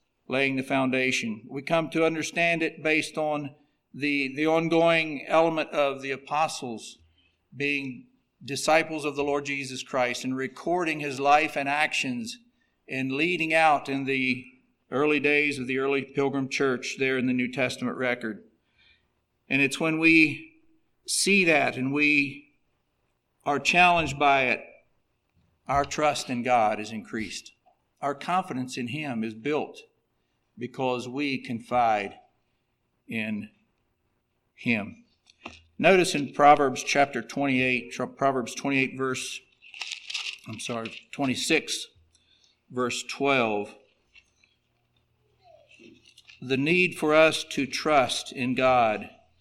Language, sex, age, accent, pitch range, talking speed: English, male, 50-69, American, 125-155 Hz, 120 wpm